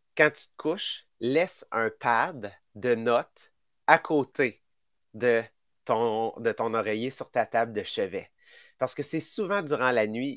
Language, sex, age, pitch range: English, male, 30-49, 115-165 Hz